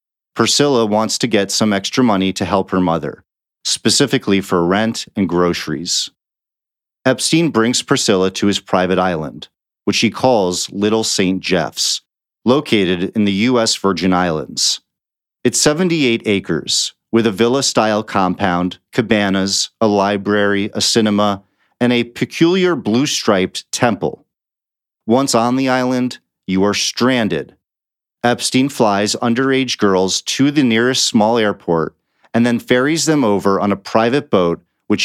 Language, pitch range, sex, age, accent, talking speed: English, 100-130 Hz, male, 40-59, American, 135 wpm